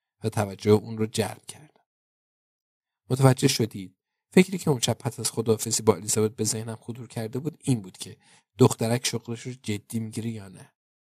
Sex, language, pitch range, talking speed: male, Persian, 105-130 Hz, 170 wpm